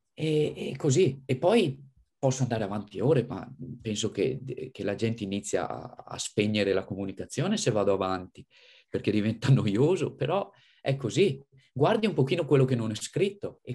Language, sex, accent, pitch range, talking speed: Italian, male, native, 110-135 Hz, 165 wpm